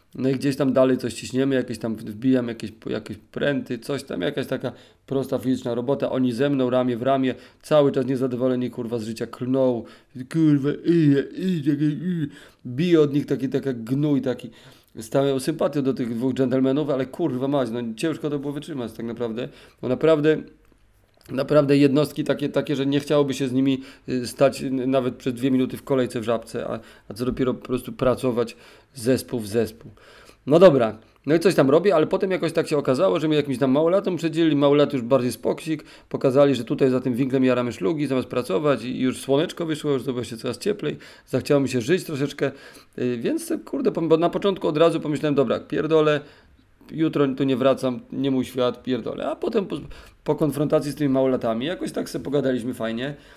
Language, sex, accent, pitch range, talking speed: Polish, male, native, 125-145 Hz, 190 wpm